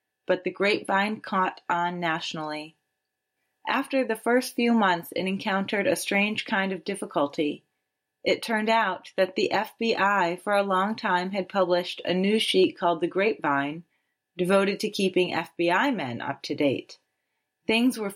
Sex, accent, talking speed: female, American, 150 wpm